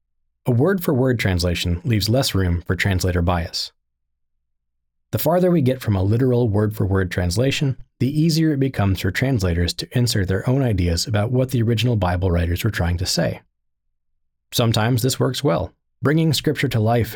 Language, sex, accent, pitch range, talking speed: English, male, American, 90-125 Hz, 165 wpm